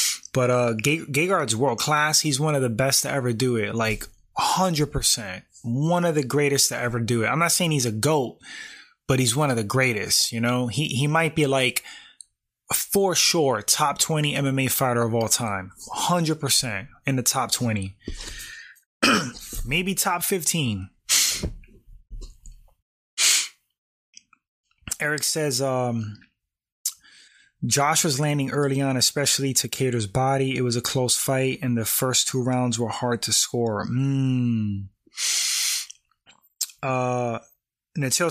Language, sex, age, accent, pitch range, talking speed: English, male, 20-39, American, 120-150 Hz, 140 wpm